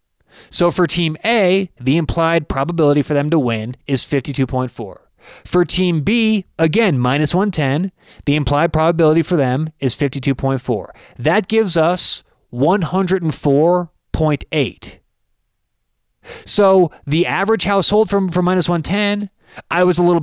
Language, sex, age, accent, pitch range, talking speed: English, male, 30-49, American, 140-185 Hz, 120 wpm